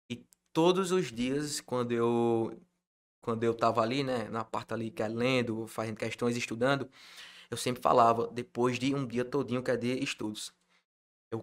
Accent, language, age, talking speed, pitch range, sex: Brazilian, Portuguese, 20-39, 170 wpm, 110-130 Hz, male